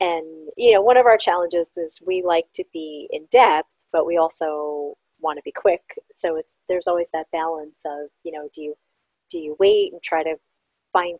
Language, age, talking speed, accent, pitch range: English, 30-49, 210 wpm, American, 155-185 Hz